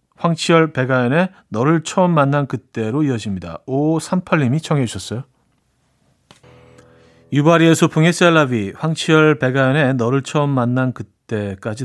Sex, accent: male, native